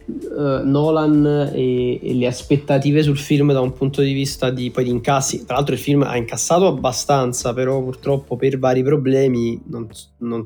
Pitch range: 115-135 Hz